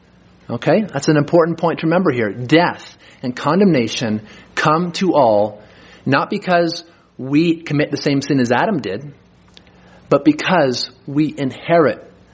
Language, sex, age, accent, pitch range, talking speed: English, male, 30-49, American, 125-170 Hz, 135 wpm